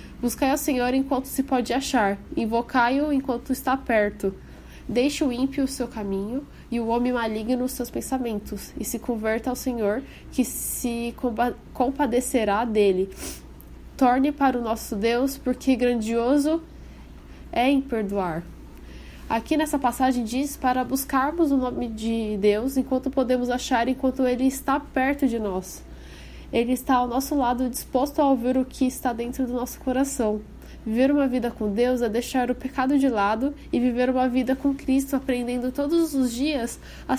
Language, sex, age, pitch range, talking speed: Portuguese, female, 10-29, 220-265 Hz, 160 wpm